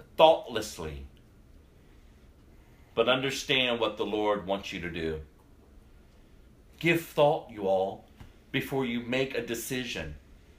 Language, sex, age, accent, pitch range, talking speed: English, male, 40-59, American, 115-170 Hz, 110 wpm